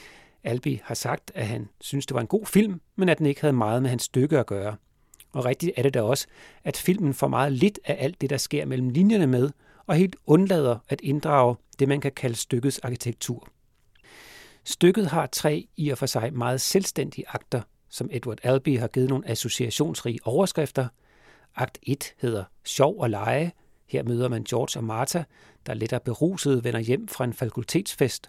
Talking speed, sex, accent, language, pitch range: 190 wpm, male, native, Danish, 120-150 Hz